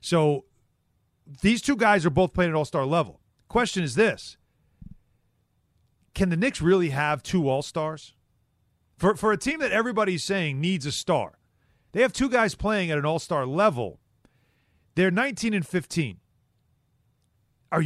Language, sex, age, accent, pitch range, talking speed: English, male, 40-59, American, 120-190 Hz, 150 wpm